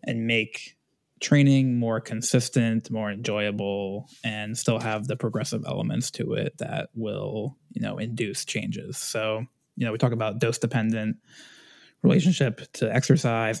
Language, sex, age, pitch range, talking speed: English, male, 20-39, 110-145 Hz, 135 wpm